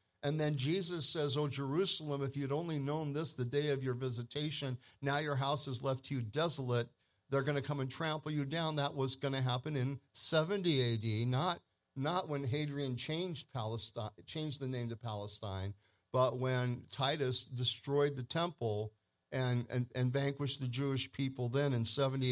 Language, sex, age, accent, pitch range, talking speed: English, male, 50-69, American, 110-140 Hz, 180 wpm